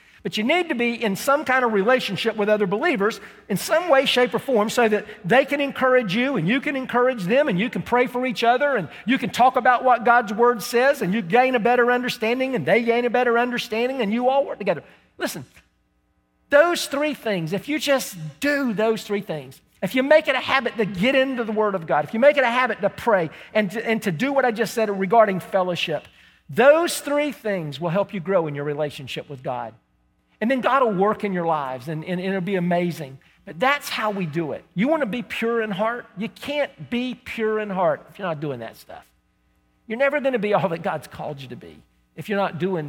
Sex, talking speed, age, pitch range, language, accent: male, 240 wpm, 50-69, 180-250 Hz, English, American